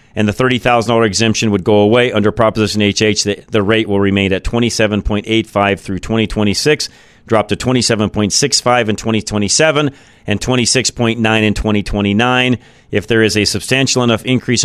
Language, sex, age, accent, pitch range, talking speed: English, male, 40-59, American, 105-125 Hz, 135 wpm